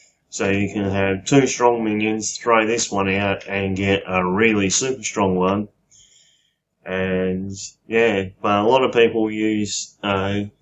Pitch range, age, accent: 100-110 Hz, 20-39, Australian